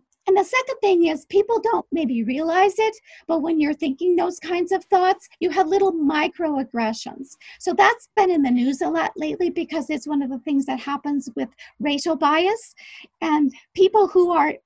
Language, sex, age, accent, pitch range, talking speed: English, female, 40-59, American, 270-355 Hz, 190 wpm